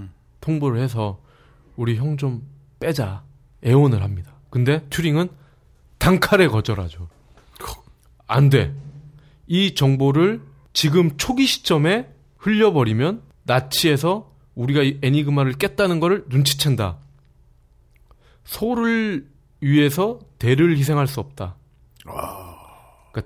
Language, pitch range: Korean, 110-175 Hz